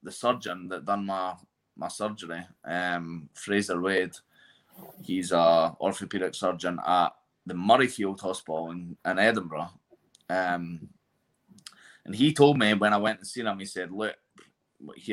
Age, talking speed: 20-39, 145 wpm